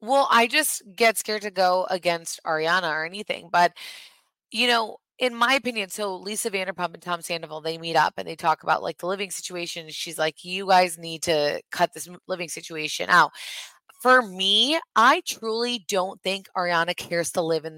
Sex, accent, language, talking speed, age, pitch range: female, American, English, 190 wpm, 20-39, 180-240 Hz